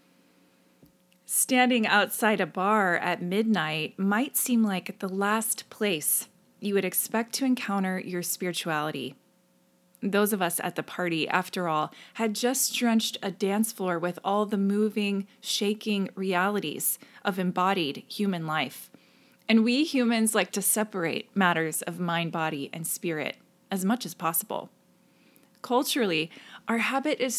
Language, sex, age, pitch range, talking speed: English, female, 20-39, 175-230 Hz, 140 wpm